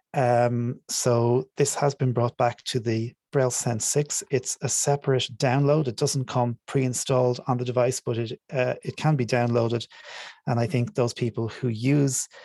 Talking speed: 180 wpm